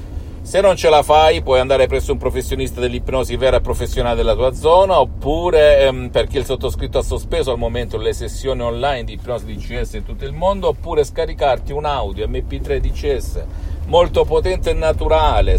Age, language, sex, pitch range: 50-69, Italian, male, 90-145 Hz